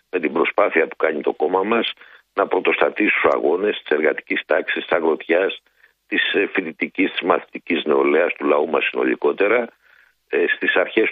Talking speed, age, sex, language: 150 wpm, 60-79, male, Greek